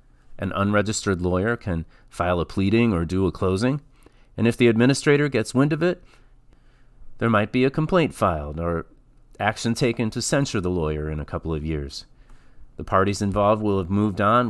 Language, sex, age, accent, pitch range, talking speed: English, male, 40-59, American, 85-120 Hz, 180 wpm